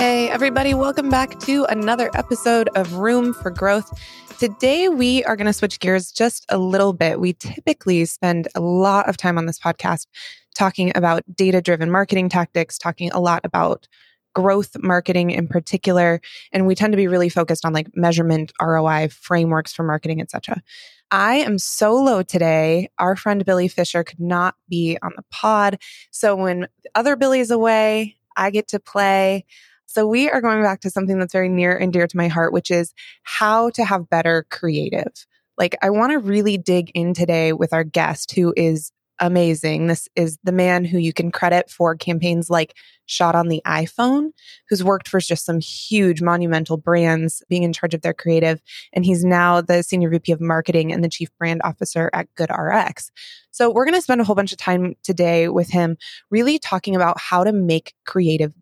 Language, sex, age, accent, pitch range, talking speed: English, female, 20-39, American, 170-205 Hz, 190 wpm